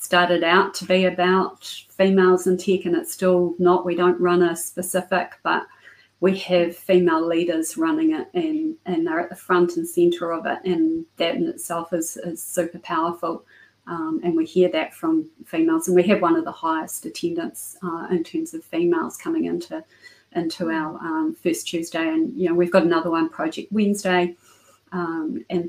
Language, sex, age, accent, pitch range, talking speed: English, female, 40-59, Australian, 170-200 Hz, 185 wpm